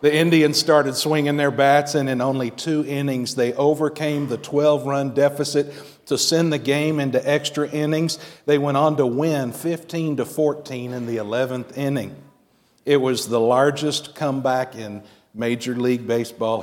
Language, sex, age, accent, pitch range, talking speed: English, male, 50-69, American, 135-180 Hz, 150 wpm